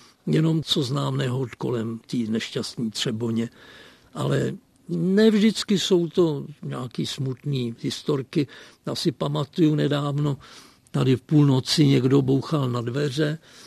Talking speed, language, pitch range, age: 120 wpm, Czech, 130-165 Hz, 60-79